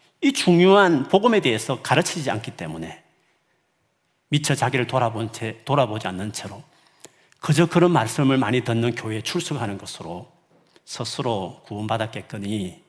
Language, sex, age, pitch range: Korean, male, 40-59, 110-175 Hz